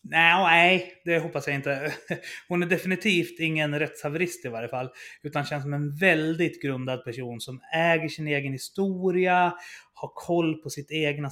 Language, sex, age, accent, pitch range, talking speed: Swedish, male, 30-49, native, 140-185 Hz, 160 wpm